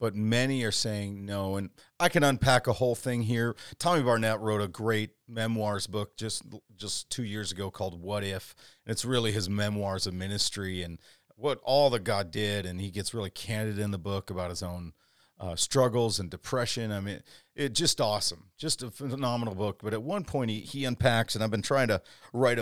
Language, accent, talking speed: English, American, 205 wpm